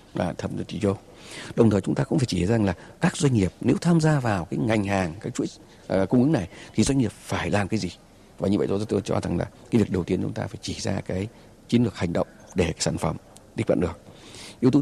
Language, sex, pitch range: Vietnamese, male, 95-140 Hz